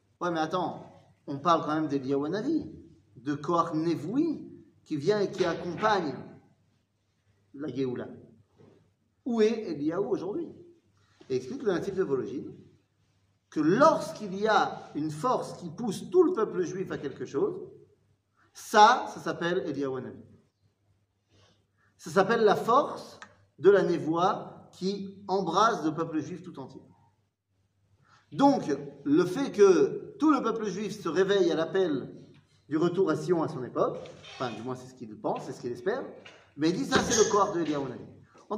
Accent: French